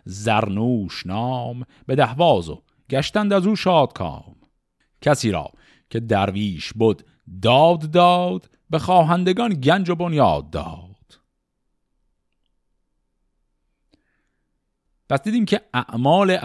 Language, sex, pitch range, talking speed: Persian, male, 110-165 Hz, 100 wpm